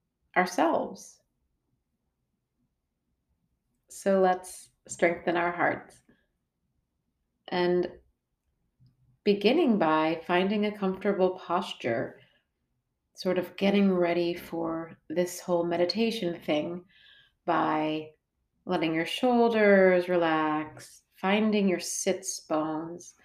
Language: English